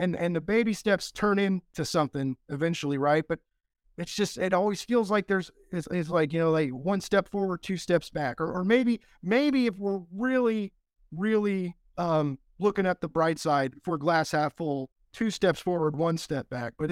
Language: English